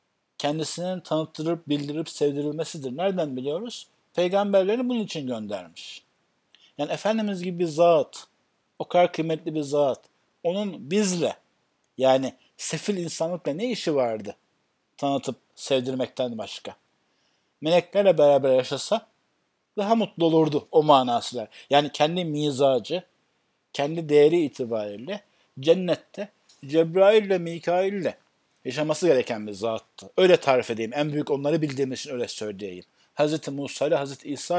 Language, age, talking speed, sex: Turkish, 60-79, 115 wpm, male